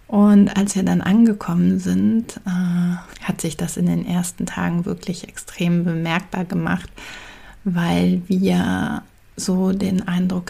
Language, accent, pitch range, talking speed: German, German, 185-205 Hz, 130 wpm